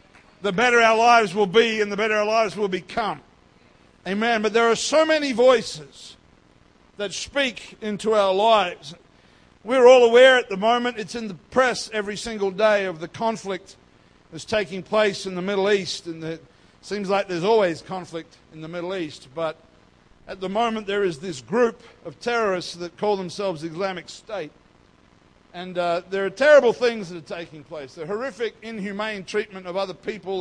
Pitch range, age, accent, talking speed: 175-225 Hz, 50-69, Australian, 180 wpm